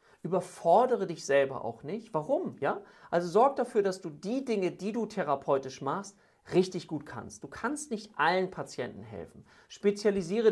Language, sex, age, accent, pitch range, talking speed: German, male, 40-59, German, 145-200 Hz, 160 wpm